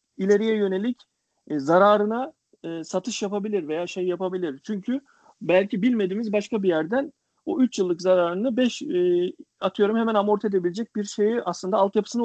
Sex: male